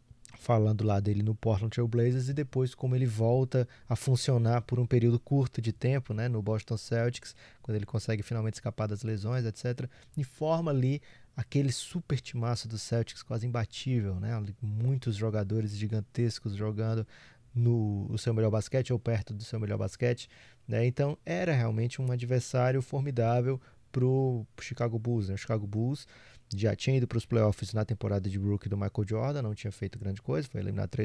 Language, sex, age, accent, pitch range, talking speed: Portuguese, male, 20-39, Brazilian, 110-130 Hz, 175 wpm